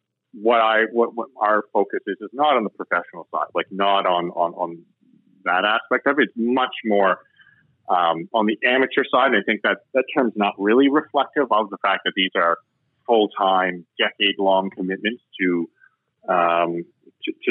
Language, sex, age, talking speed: English, male, 30-49, 180 wpm